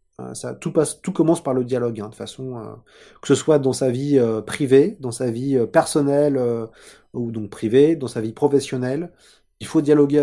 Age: 30-49